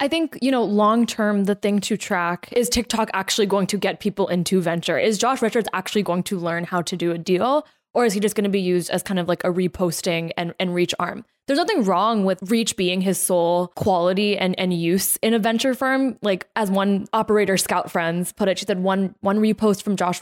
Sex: female